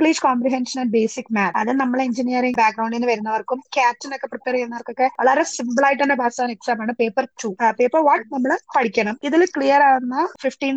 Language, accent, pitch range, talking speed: Malayalam, native, 235-280 Hz, 175 wpm